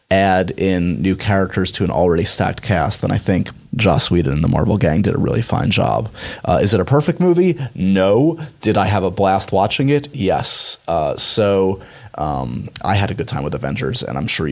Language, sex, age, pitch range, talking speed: English, male, 30-49, 95-120 Hz, 210 wpm